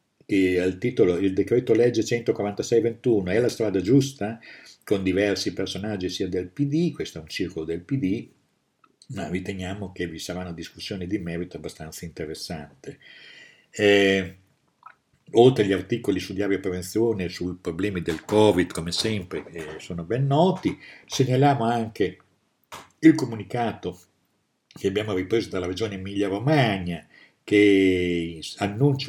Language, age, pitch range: Italian, 50-69, 90-115 Hz